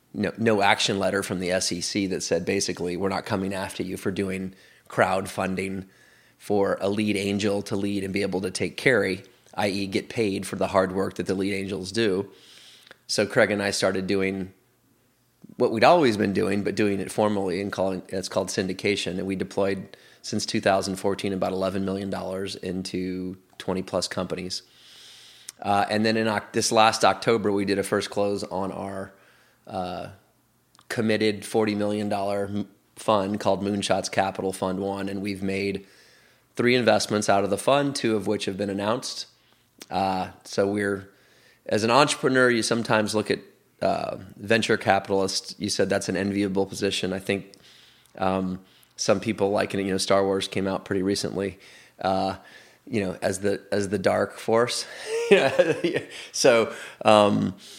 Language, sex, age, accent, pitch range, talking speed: English, male, 30-49, American, 95-105 Hz, 165 wpm